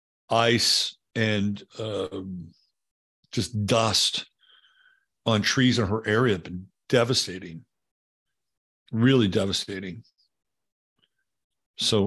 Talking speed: 80 wpm